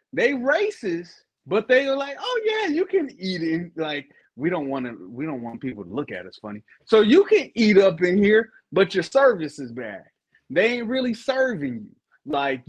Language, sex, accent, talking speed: English, male, American, 210 wpm